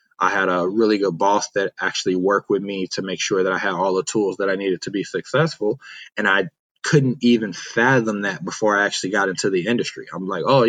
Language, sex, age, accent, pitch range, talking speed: English, male, 20-39, American, 100-125 Hz, 235 wpm